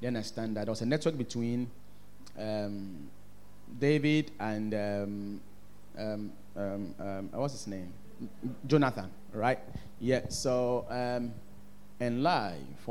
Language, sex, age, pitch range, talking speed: English, male, 30-49, 100-135 Hz, 110 wpm